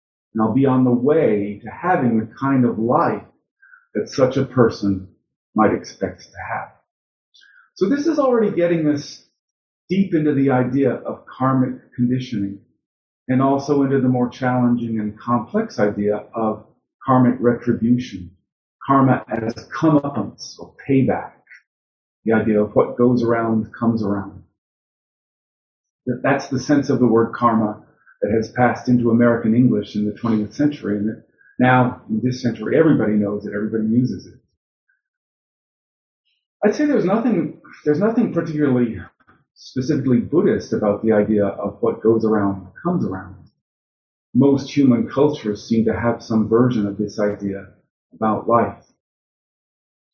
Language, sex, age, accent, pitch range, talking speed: English, male, 40-59, American, 105-135 Hz, 140 wpm